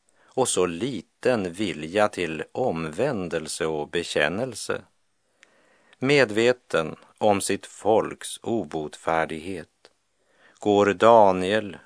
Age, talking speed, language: 50-69, 75 wpm, Polish